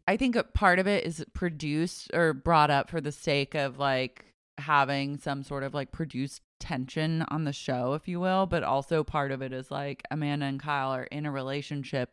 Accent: American